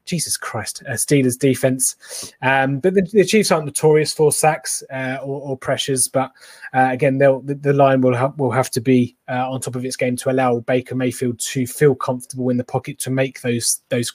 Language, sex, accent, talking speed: English, male, British, 215 wpm